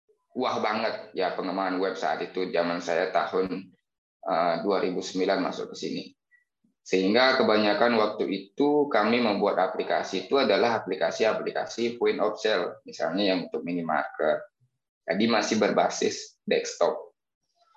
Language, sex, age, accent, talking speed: Indonesian, male, 20-39, native, 115 wpm